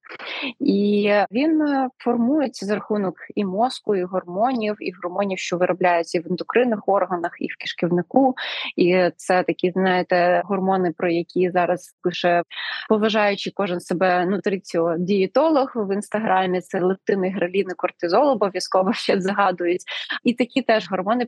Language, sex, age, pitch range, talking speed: Ukrainian, female, 20-39, 185-220 Hz, 135 wpm